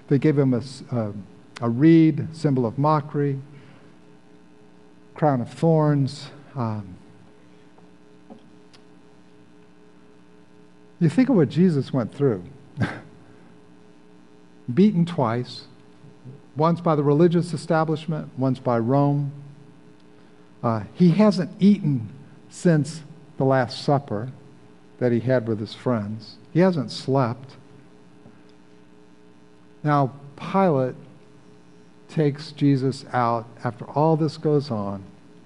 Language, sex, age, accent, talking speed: English, male, 50-69, American, 95 wpm